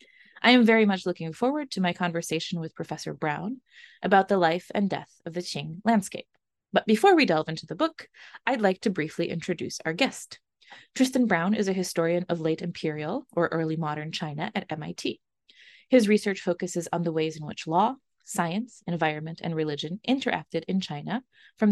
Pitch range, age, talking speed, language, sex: 165-220 Hz, 20-39, 180 wpm, English, female